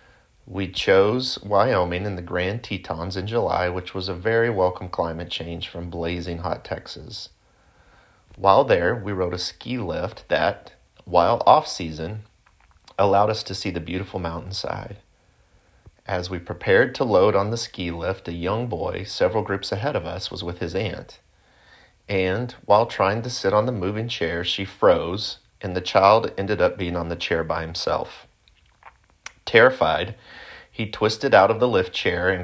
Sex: male